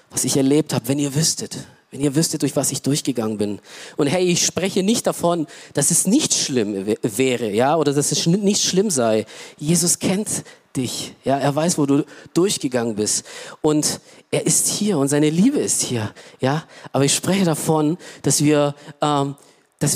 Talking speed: 190 wpm